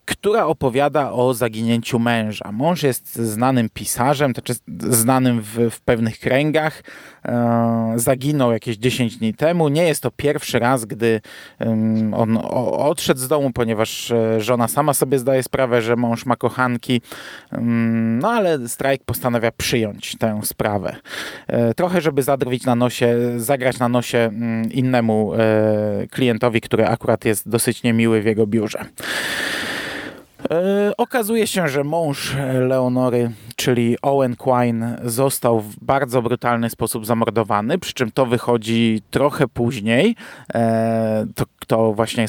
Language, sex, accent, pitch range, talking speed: Polish, male, native, 115-135 Hz, 125 wpm